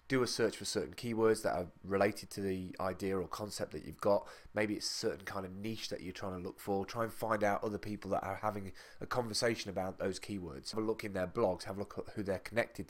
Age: 20-39